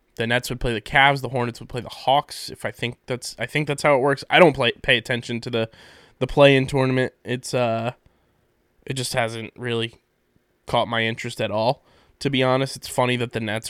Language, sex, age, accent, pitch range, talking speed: English, male, 20-39, American, 115-130 Hz, 230 wpm